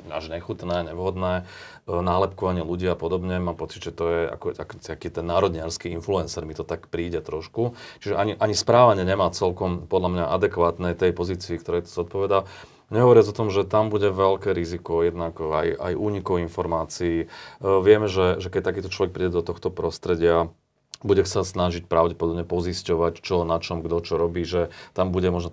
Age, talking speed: 30-49, 175 wpm